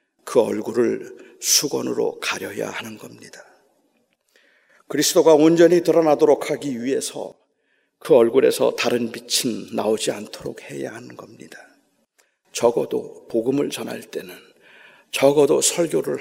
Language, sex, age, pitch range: Korean, male, 40-59, 135-200 Hz